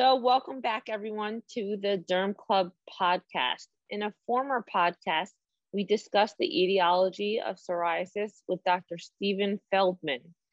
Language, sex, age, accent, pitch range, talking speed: English, female, 20-39, American, 180-220 Hz, 130 wpm